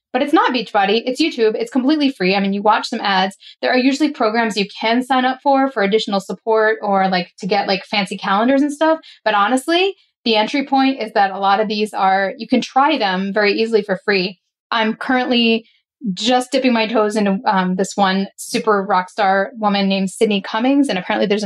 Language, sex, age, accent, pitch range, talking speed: English, female, 10-29, American, 200-265 Hz, 215 wpm